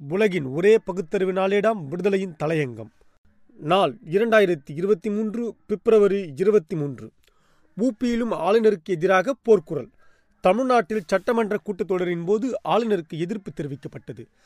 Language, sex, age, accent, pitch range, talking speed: Tamil, male, 30-49, native, 165-210 Hz, 100 wpm